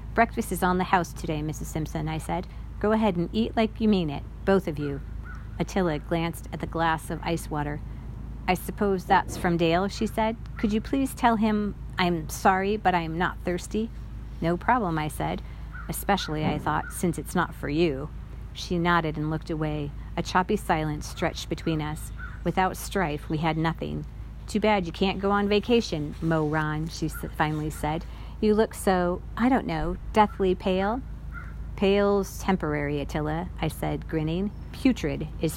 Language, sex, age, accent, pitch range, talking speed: English, female, 40-59, American, 155-190 Hz, 170 wpm